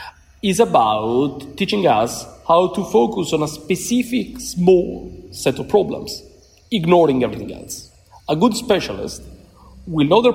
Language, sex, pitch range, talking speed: English, male, 115-180 Hz, 135 wpm